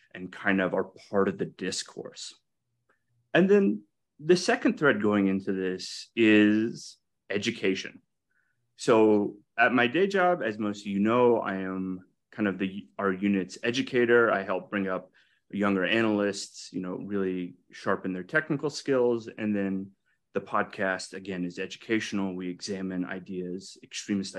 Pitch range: 95-130 Hz